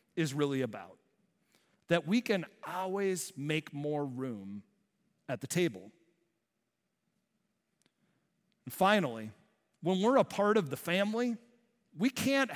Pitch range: 155-210 Hz